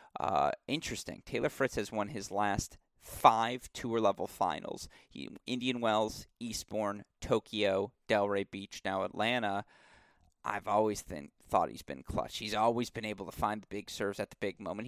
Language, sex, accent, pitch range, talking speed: English, male, American, 105-130 Hz, 155 wpm